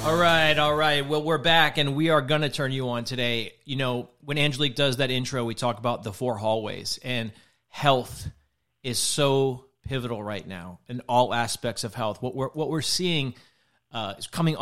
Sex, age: male, 40-59